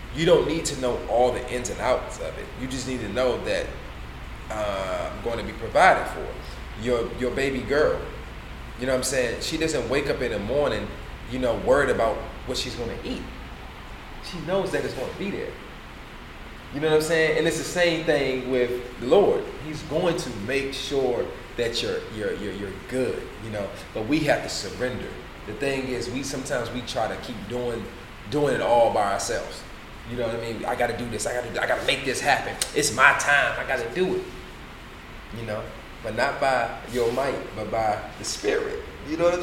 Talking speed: 220 wpm